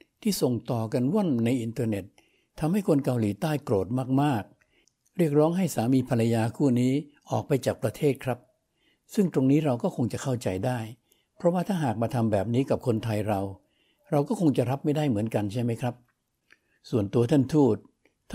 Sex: male